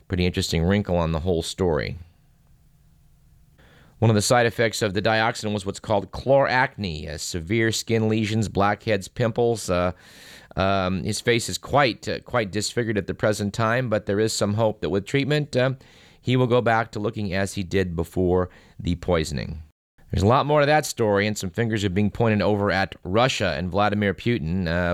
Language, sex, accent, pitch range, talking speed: English, male, American, 90-120 Hz, 190 wpm